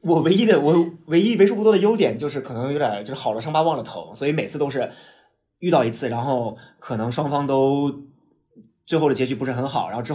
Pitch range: 115-145 Hz